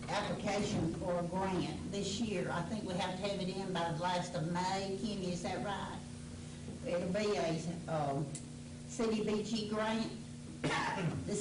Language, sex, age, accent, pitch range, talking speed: English, female, 60-79, American, 170-205 Hz, 165 wpm